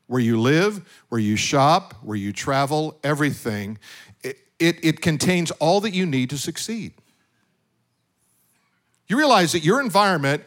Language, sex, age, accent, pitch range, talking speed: English, male, 50-69, American, 130-180 Hz, 145 wpm